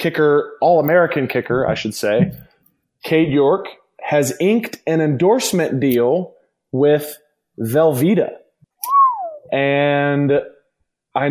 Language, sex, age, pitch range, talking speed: English, male, 20-39, 125-155 Hz, 95 wpm